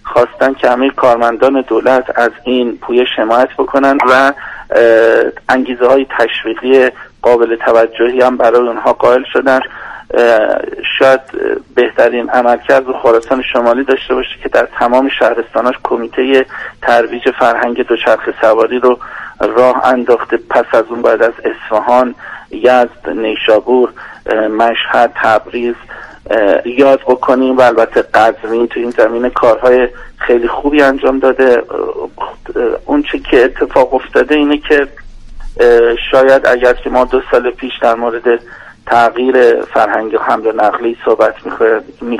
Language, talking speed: Persian, 120 wpm